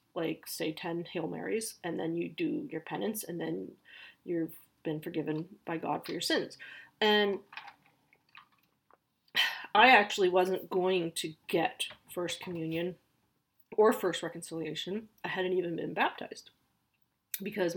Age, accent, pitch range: 30-49, American, 180-240 Hz